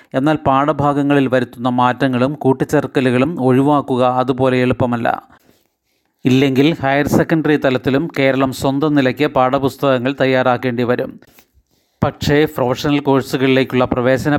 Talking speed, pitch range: 90 wpm, 125-140 Hz